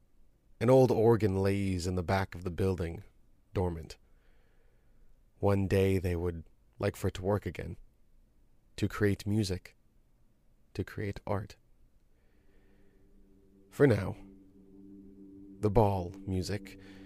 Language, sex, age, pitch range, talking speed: English, male, 30-49, 95-105 Hz, 115 wpm